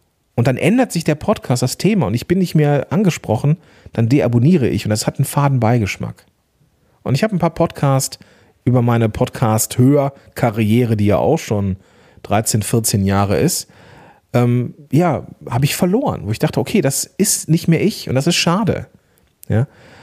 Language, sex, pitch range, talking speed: German, male, 110-150 Hz, 180 wpm